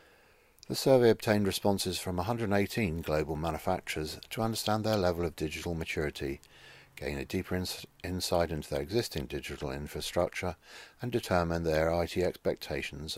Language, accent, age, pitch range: English, British, 50-69, 75-100 Hz